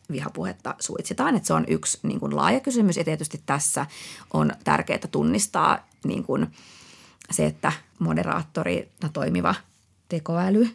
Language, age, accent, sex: Finnish, 30-49, native, female